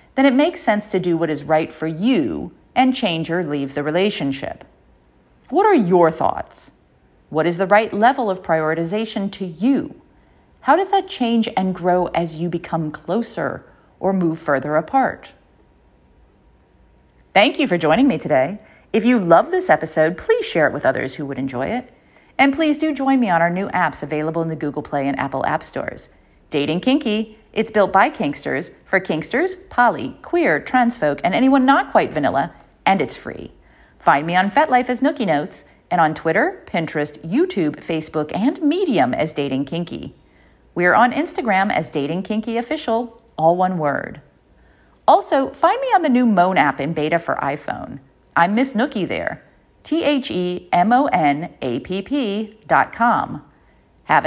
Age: 40-59